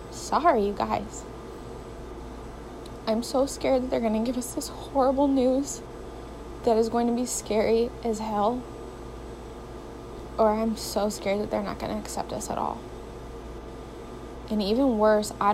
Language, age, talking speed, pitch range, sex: English, 20-39, 145 wpm, 195-220 Hz, female